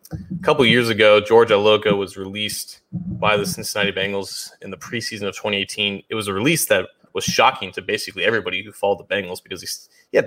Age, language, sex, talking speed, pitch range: 20-39, English, male, 200 wpm, 105-145 Hz